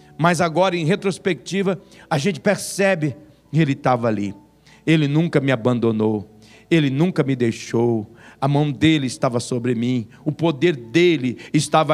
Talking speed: 145 wpm